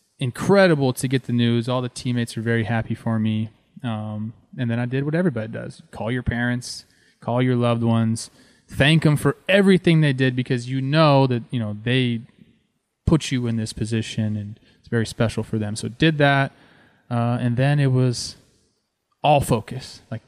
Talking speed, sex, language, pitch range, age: 185 wpm, male, English, 115-135 Hz, 20-39